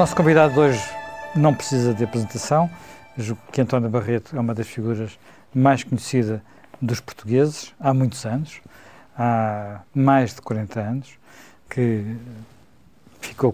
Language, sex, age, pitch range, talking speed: Portuguese, male, 50-69, 110-135 Hz, 135 wpm